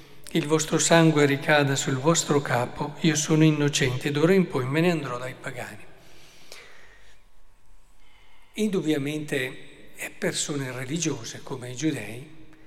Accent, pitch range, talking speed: native, 145-175 Hz, 120 wpm